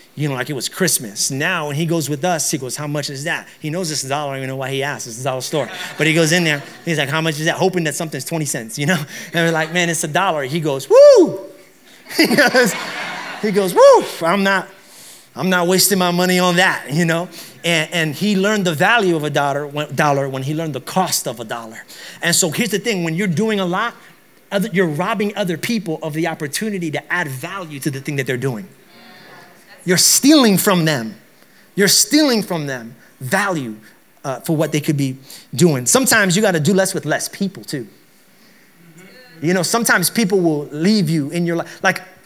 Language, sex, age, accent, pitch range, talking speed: English, male, 30-49, American, 150-195 Hz, 225 wpm